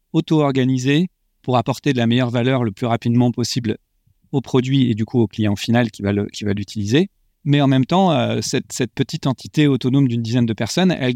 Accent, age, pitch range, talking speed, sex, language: French, 40-59, 115-140 Hz, 215 wpm, male, French